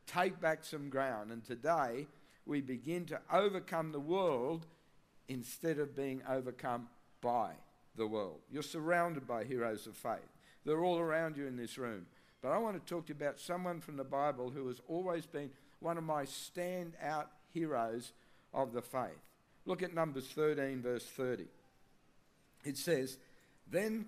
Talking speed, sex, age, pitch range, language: 160 wpm, male, 60-79, 130-170 Hz, English